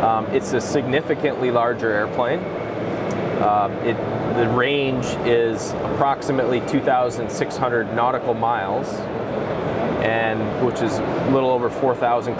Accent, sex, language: American, male, Russian